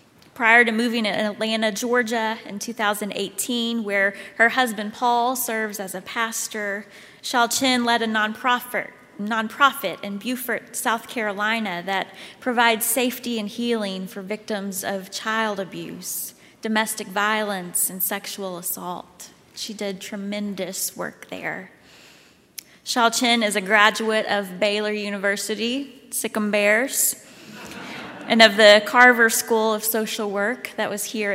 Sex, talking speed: female, 125 wpm